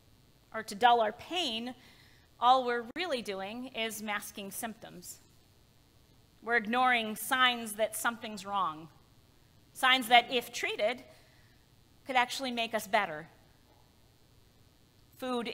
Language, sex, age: English, female, 30-49